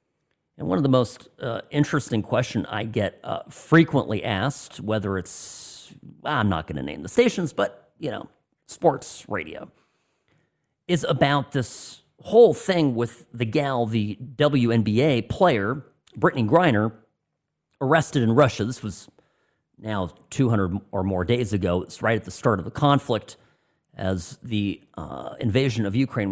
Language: English